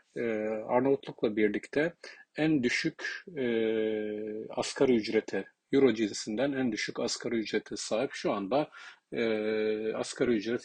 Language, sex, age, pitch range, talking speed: Turkish, male, 40-59, 110-130 Hz, 95 wpm